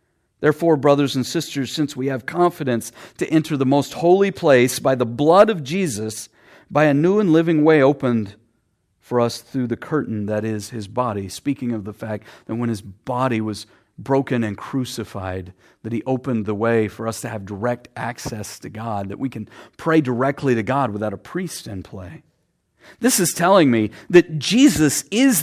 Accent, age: American, 50-69